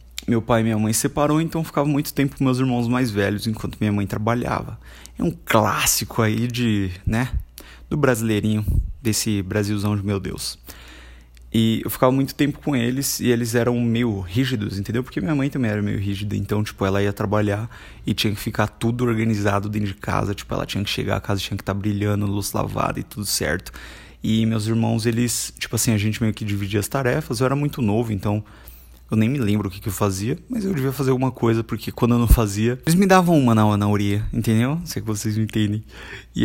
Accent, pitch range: Brazilian, 105-120 Hz